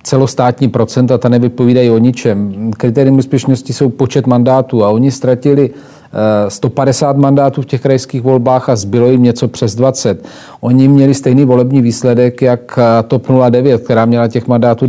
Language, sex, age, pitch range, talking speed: Czech, male, 40-59, 115-135 Hz, 155 wpm